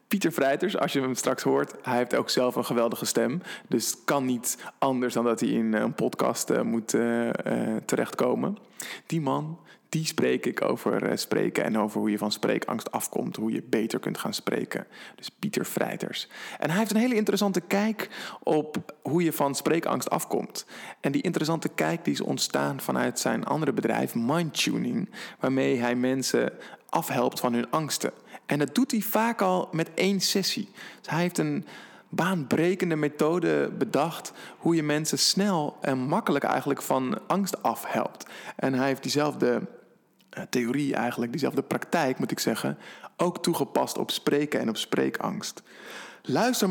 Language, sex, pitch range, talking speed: Dutch, male, 125-180 Hz, 165 wpm